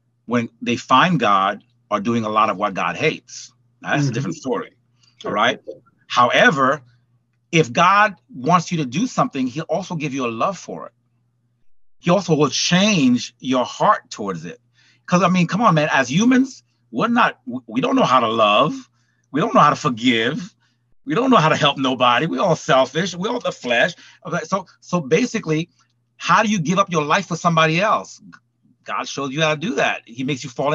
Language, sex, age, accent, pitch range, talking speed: English, male, 40-59, American, 125-195 Hz, 205 wpm